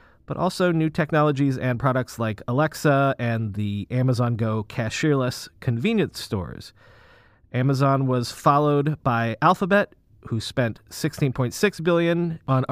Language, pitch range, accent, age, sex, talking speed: English, 115-155 Hz, American, 40-59, male, 120 wpm